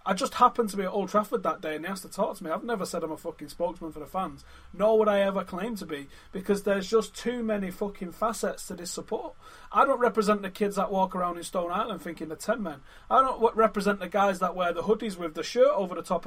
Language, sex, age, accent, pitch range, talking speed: English, male, 30-49, British, 190-235 Hz, 275 wpm